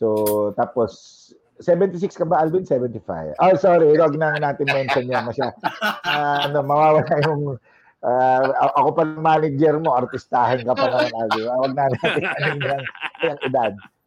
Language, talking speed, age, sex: English, 150 wpm, 50-69, male